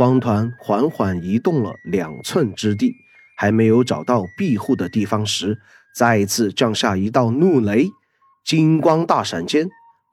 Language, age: Chinese, 30-49